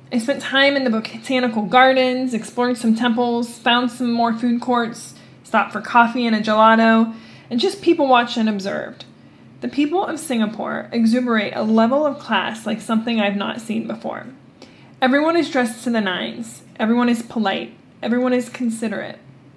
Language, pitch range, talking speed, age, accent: English, 205-245 Hz, 165 wpm, 20-39, American